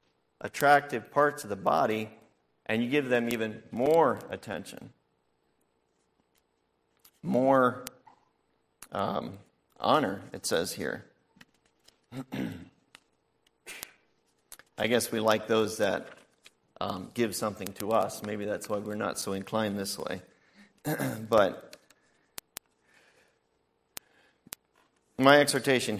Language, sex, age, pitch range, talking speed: English, male, 40-59, 105-125 Hz, 95 wpm